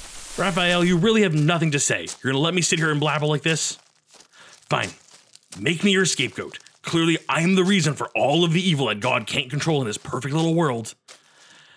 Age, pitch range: 30-49, 135-190 Hz